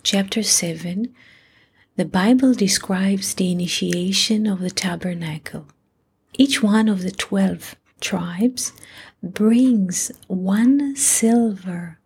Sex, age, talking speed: female, 40-59, 95 wpm